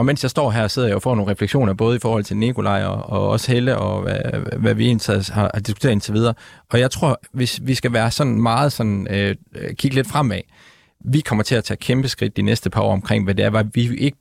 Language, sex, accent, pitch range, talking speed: Danish, male, native, 105-130 Hz, 260 wpm